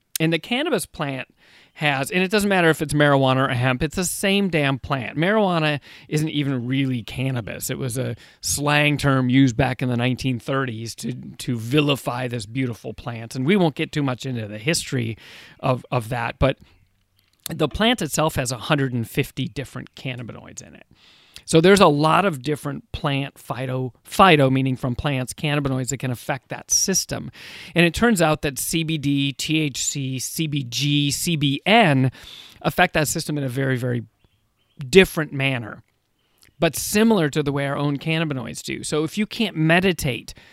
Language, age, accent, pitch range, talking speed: English, 30-49, American, 125-155 Hz, 165 wpm